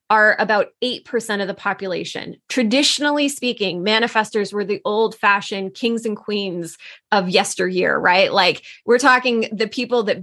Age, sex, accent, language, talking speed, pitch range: 20-39, female, American, English, 145 wpm, 205-240 Hz